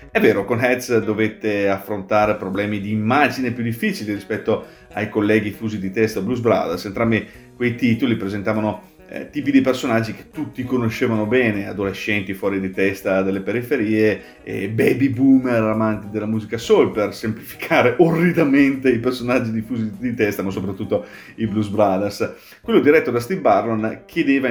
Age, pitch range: 30-49, 105-125 Hz